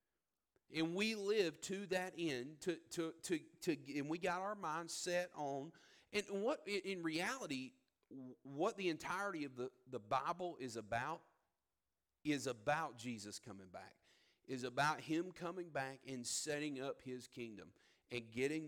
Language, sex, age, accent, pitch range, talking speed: English, male, 40-59, American, 130-160 Hz, 150 wpm